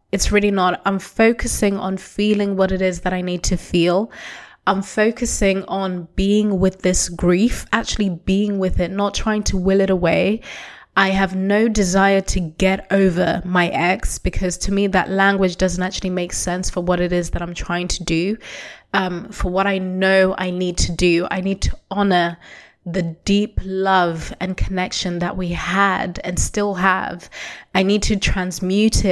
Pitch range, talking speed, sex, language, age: 180-200 Hz, 180 wpm, female, English, 20-39